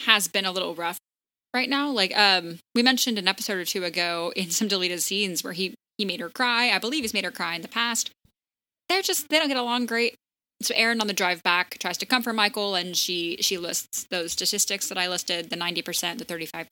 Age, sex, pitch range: 10-29, female, 180-220 Hz